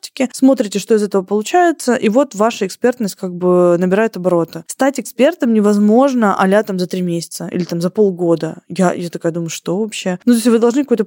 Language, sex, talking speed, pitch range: Russian, female, 200 wpm, 195-250 Hz